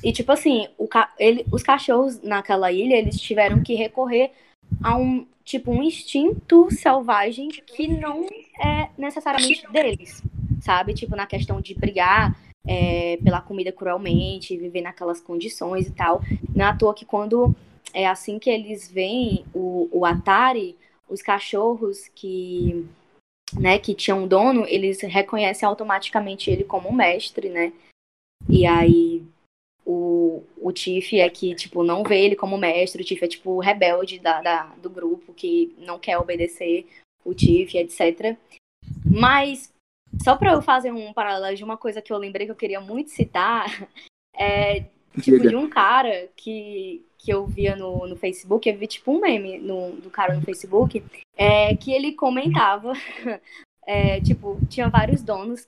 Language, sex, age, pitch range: Portuguese, female, 10-29, 180-255 Hz